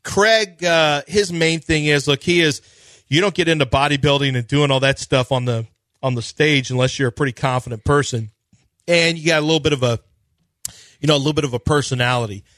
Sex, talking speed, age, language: male, 220 wpm, 40-59, English